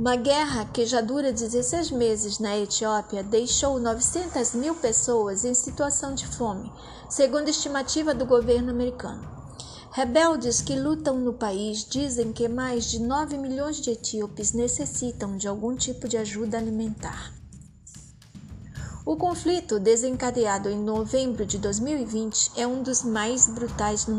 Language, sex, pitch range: Portuguese, female, 220-275 Hz